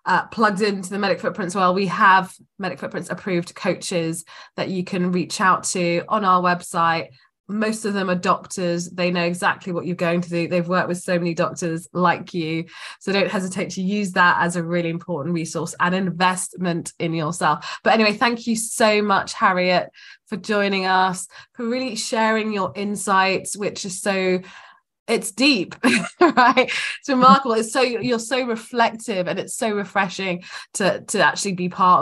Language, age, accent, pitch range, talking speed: English, 20-39, British, 170-200 Hz, 180 wpm